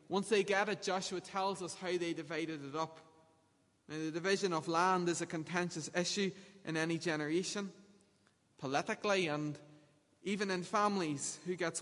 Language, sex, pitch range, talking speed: English, male, 150-185 Hz, 150 wpm